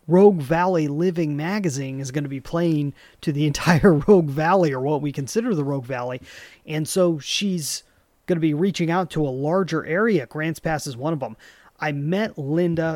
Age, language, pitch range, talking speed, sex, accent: 30-49, English, 140-175 Hz, 195 wpm, male, American